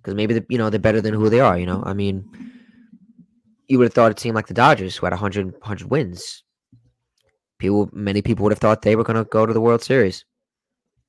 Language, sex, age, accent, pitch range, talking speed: English, male, 20-39, American, 100-125 Hz, 240 wpm